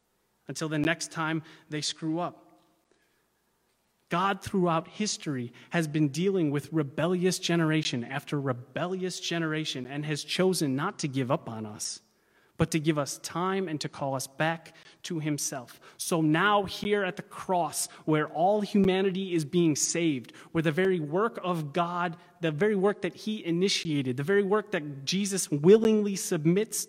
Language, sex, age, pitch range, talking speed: English, male, 30-49, 160-200 Hz, 160 wpm